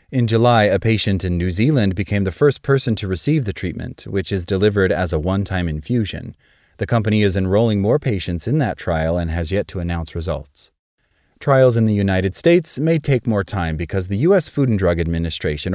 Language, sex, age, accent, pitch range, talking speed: English, male, 30-49, American, 85-115 Hz, 200 wpm